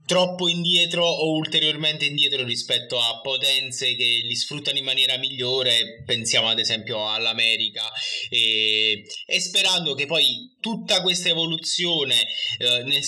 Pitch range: 125-160 Hz